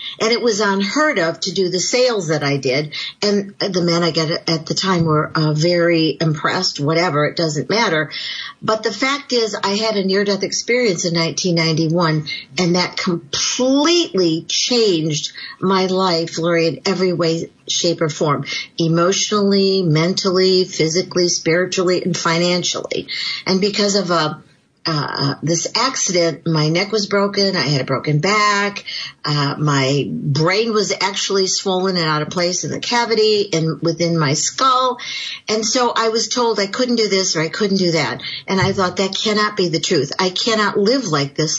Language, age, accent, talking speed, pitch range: English, 50-69, American, 170 wpm, 165-205 Hz